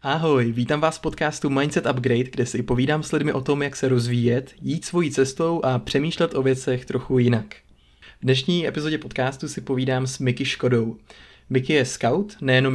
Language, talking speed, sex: Czech, 185 wpm, male